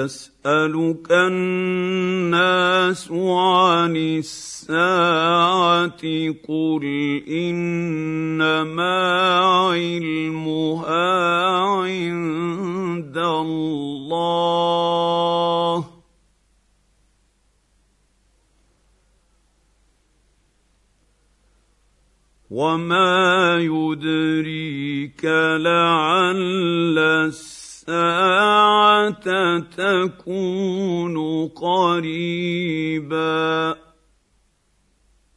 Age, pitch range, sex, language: 50-69, 160-185 Hz, male, English